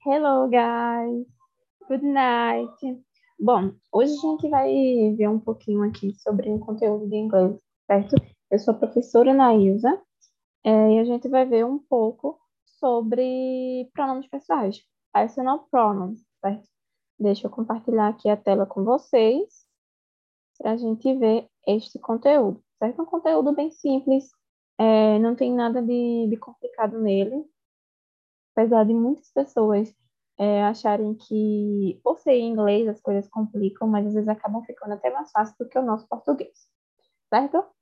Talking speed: 145 wpm